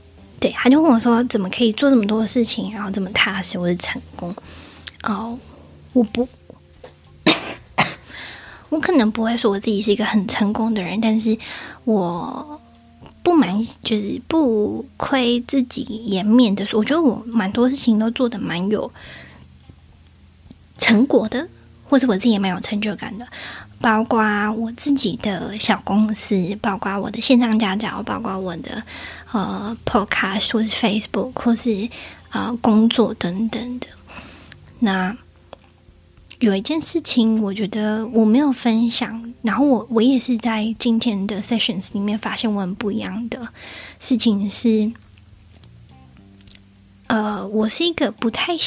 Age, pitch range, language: 10-29, 195-240 Hz, Chinese